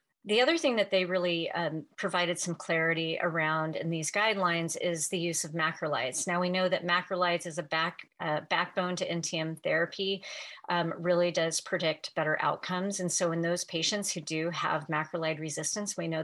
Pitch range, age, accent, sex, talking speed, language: 160-185 Hz, 40-59, American, female, 185 wpm, English